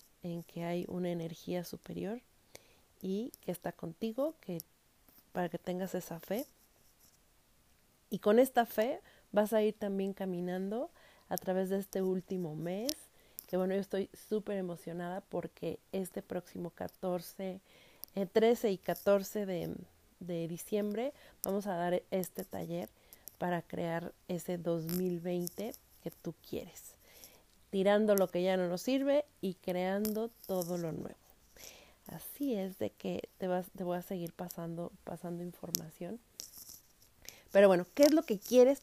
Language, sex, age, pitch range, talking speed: Spanish, female, 30-49, 180-220 Hz, 140 wpm